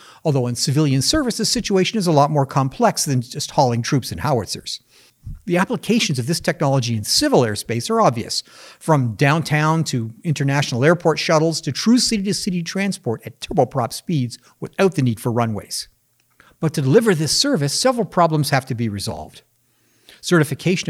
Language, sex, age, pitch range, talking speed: English, male, 50-69, 125-170 Hz, 165 wpm